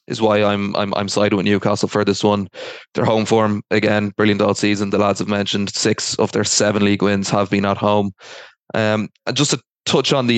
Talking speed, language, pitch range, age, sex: 225 wpm, English, 100-115 Hz, 20-39, male